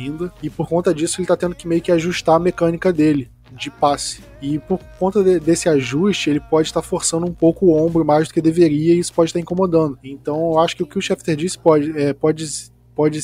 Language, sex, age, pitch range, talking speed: Portuguese, male, 20-39, 145-175 Hz, 245 wpm